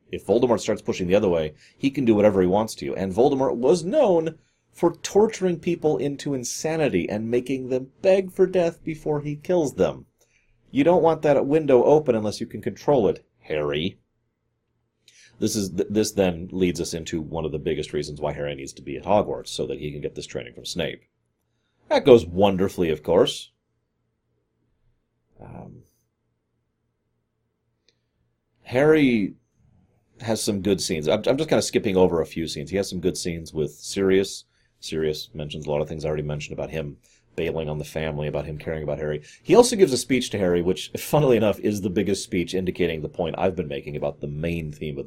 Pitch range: 80-125 Hz